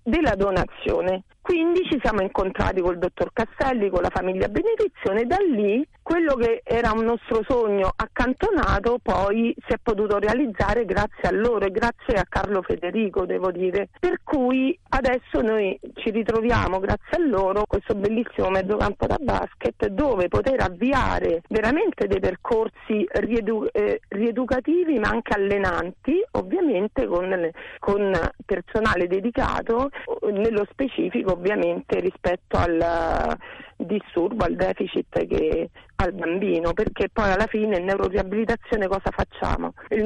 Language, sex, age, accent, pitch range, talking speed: Italian, female, 40-59, native, 200-260 Hz, 135 wpm